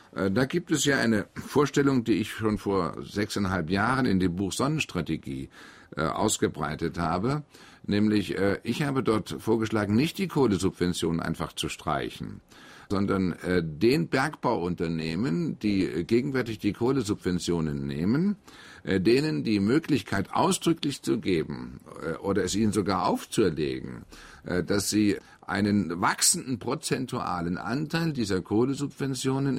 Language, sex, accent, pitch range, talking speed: German, male, German, 90-130 Hz, 130 wpm